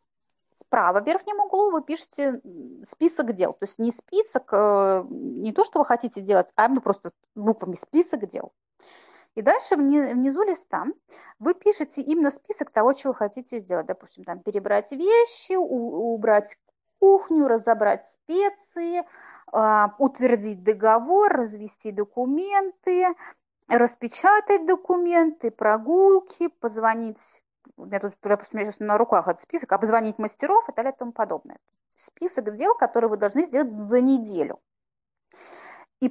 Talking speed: 130 wpm